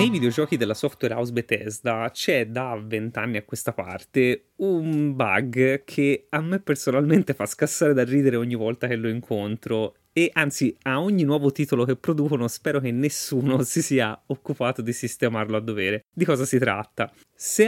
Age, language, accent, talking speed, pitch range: 20-39, Italian, native, 170 wpm, 115-155 Hz